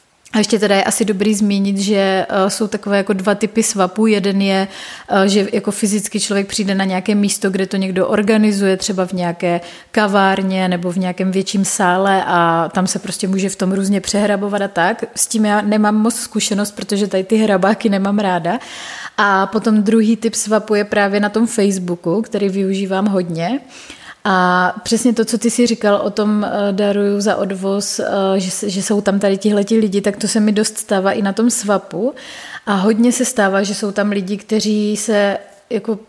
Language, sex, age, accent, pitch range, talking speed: Czech, female, 30-49, native, 195-220 Hz, 190 wpm